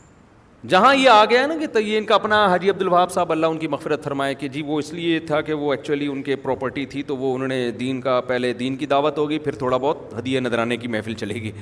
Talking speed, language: 275 wpm, Urdu